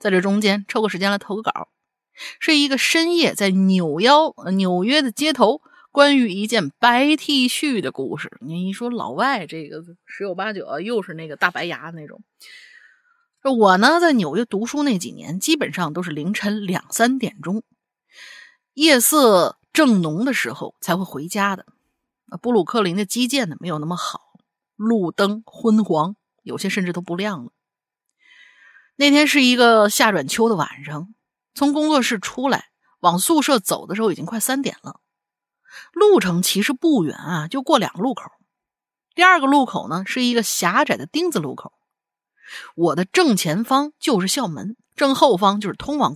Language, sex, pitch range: Chinese, female, 190-280 Hz